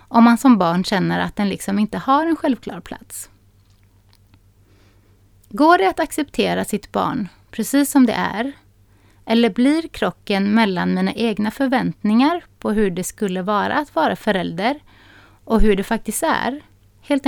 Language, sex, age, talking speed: Swedish, female, 30-49, 155 wpm